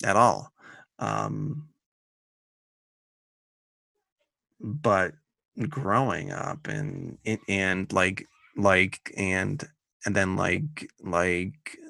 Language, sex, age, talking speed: English, male, 30-49, 80 wpm